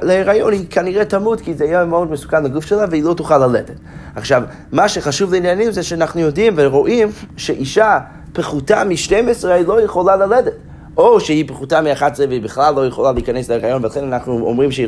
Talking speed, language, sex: 175 wpm, Hebrew, male